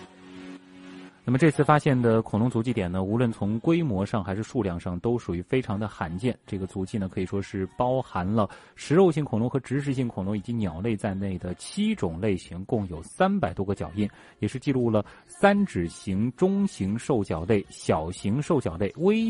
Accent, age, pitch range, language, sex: native, 30-49, 95-140 Hz, Chinese, male